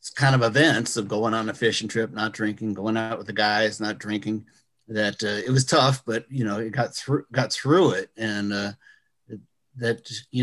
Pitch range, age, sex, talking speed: 105-130 Hz, 50-69, male, 215 wpm